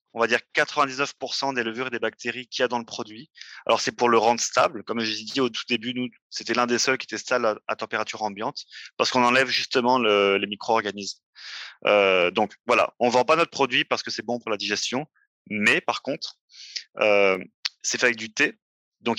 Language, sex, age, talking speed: French, male, 20-39, 230 wpm